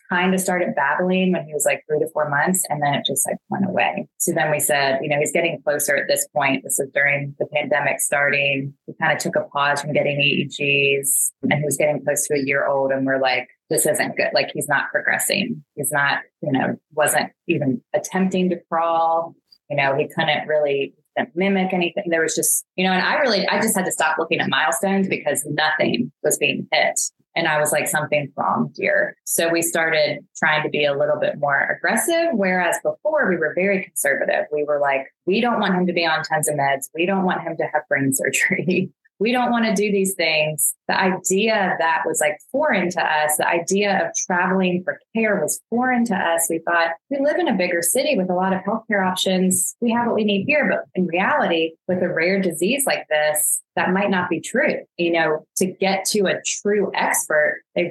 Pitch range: 150-195 Hz